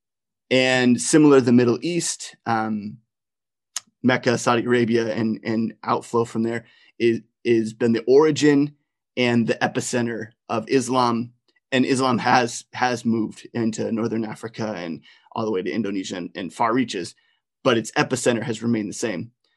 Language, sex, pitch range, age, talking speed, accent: English, male, 115-125 Hz, 30-49, 155 wpm, American